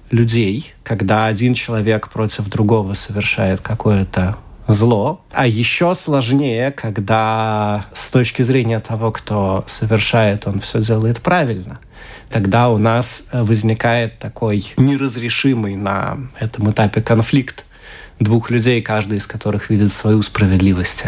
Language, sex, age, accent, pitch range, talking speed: Russian, male, 30-49, native, 105-125 Hz, 115 wpm